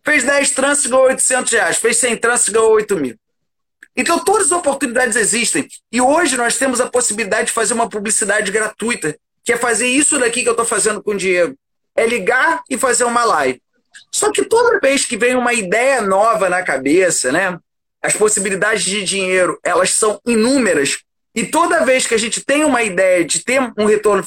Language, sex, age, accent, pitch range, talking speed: Portuguese, male, 30-49, Brazilian, 220-280 Hz, 195 wpm